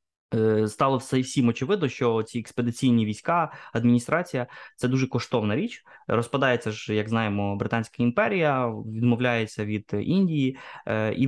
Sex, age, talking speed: male, 20-39, 120 wpm